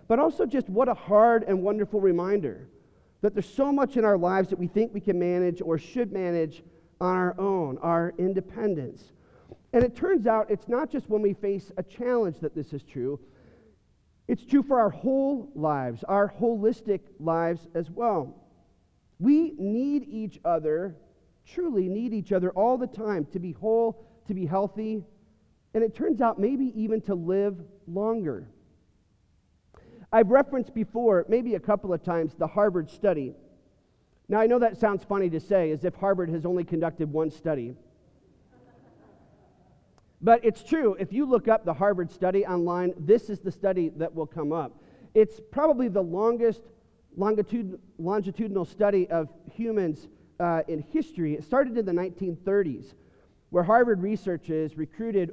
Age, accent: 40-59, American